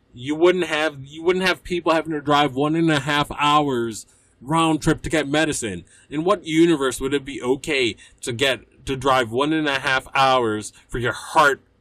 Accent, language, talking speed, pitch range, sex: American, English, 200 wpm, 120-155 Hz, male